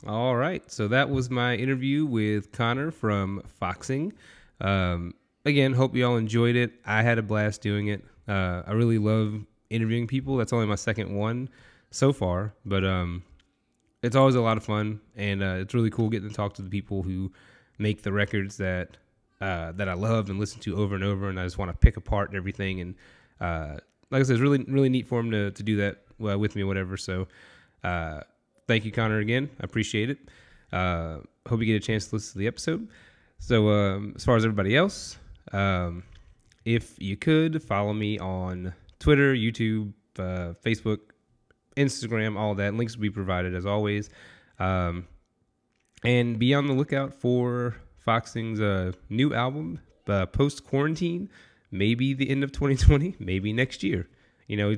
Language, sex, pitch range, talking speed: English, male, 95-120 Hz, 180 wpm